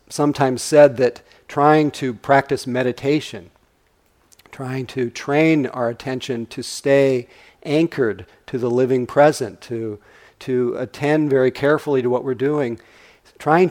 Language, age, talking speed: English, 50-69, 125 wpm